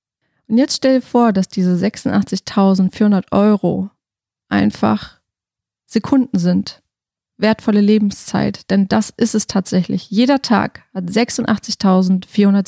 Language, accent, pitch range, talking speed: German, German, 195-225 Hz, 110 wpm